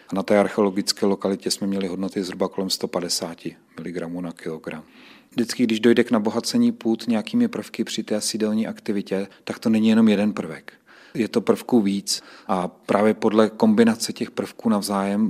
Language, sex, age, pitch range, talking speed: Czech, male, 40-59, 95-110 Hz, 160 wpm